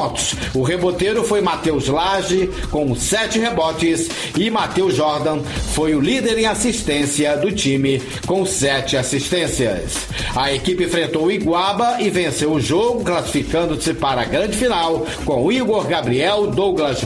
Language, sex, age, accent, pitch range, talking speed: Portuguese, male, 60-79, Brazilian, 150-195 Hz, 135 wpm